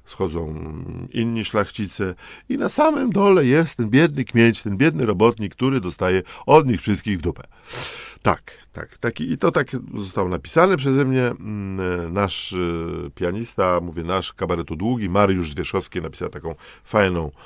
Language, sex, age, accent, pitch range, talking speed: Polish, male, 50-69, native, 85-115 Hz, 145 wpm